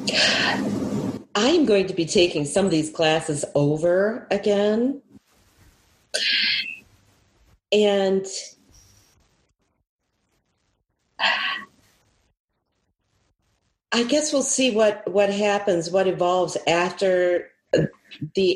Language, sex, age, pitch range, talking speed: English, female, 40-59, 160-195 Hz, 80 wpm